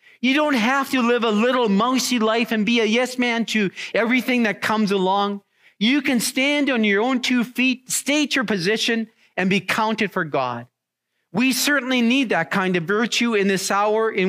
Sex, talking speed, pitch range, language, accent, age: male, 195 wpm, 195-255 Hz, English, American, 40-59